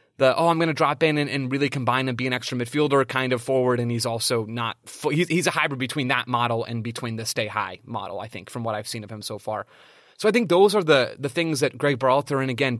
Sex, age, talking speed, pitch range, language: male, 30-49, 280 wpm, 120-145 Hz, English